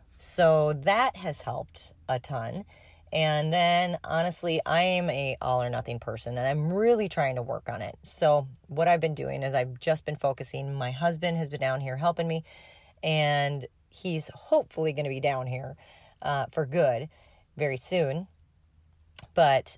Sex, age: female, 30-49